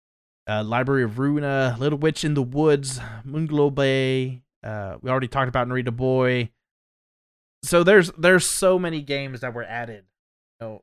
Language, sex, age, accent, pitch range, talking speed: English, male, 30-49, American, 105-150 Hz, 155 wpm